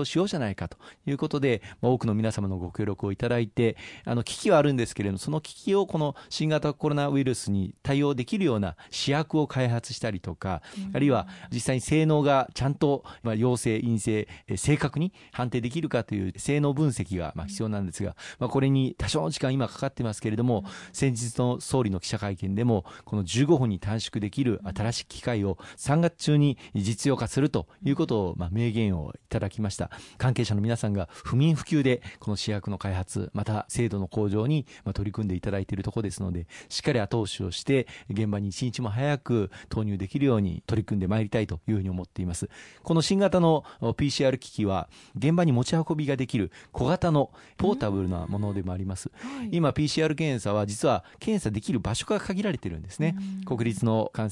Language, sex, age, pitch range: Japanese, male, 40-59, 100-140 Hz